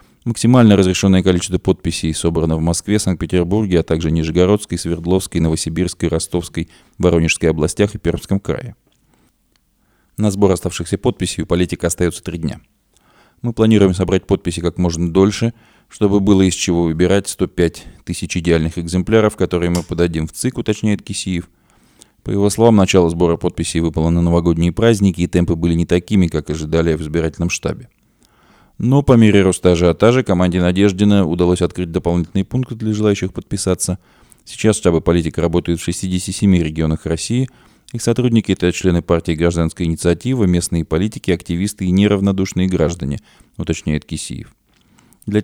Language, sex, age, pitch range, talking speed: Russian, male, 20-39, 85-100 Hz, 150 wpm